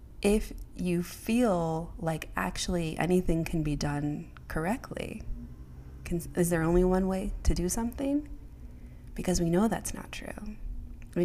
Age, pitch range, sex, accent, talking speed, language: 30-49, 155-180 Hz, female, American, 140 wpm, English